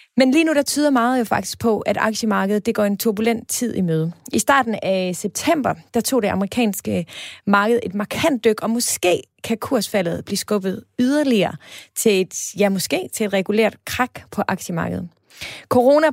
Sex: female